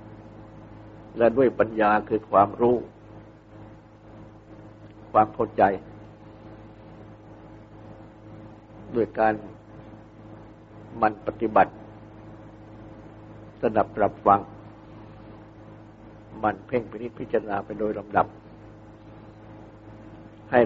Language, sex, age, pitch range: Thai, male, 60-79, 105-110 Hz